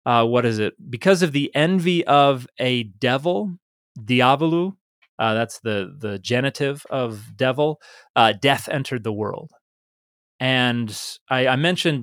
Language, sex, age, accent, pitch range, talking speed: English, male, 30-49, American, 105-140 Hz, 140 wpm